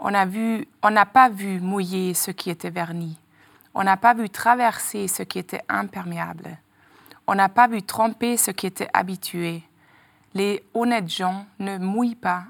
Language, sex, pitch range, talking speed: French, female, 185-225 Hz, 160 wpm